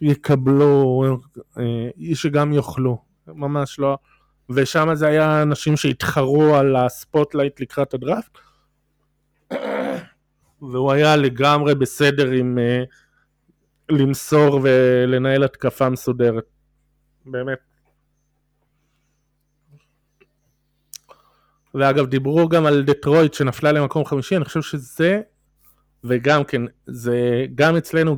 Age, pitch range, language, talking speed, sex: 20-39, 130-150 Hz, Hebrew, 90 wpm, male